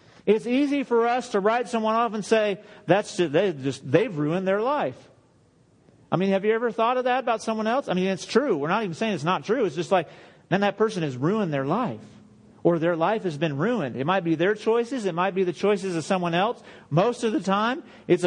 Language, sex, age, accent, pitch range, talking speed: English, male, 40-59, American, 175-220 Hz, 245 wpm